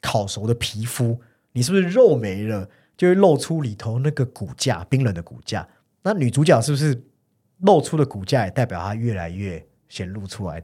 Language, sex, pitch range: Chinese, male, 95-135 Hz